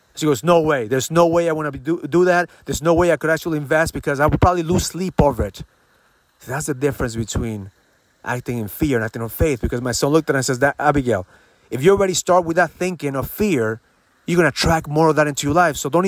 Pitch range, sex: 135-185 Hz, male